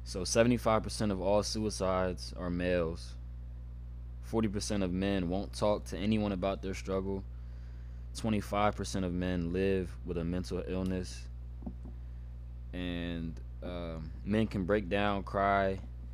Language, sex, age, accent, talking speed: English, male, 20-39, American, 120 wpm